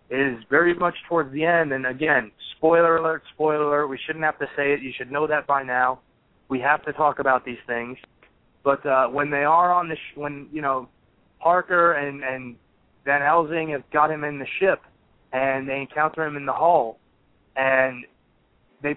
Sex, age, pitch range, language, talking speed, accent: male, 20-39, 135-160 Hz, English, 195 wpm, American